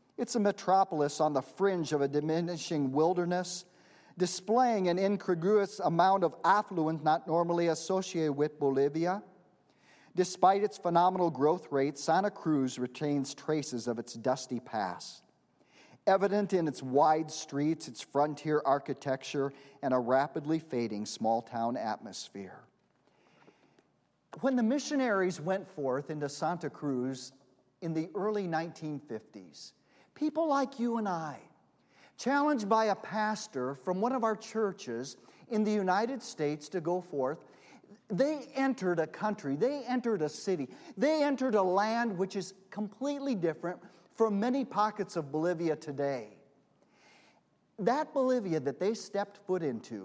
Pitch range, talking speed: 150-215 Hz, 130 wpm